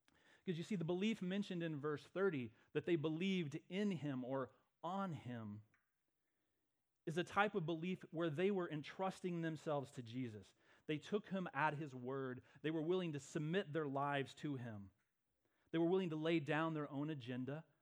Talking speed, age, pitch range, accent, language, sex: 180 wpm, 30-49, 125-165 Hz, American, English, male